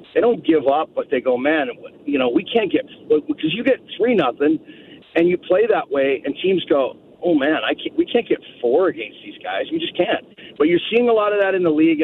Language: English